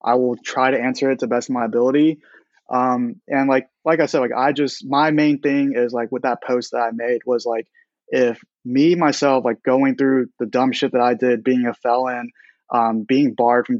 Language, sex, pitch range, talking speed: English, male, 125-145 Hz, 230 wpm